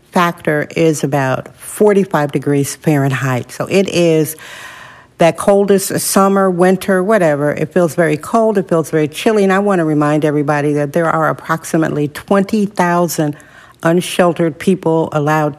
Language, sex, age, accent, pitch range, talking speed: English, female, 60-79, American, 155-200 Hz, 140 wpm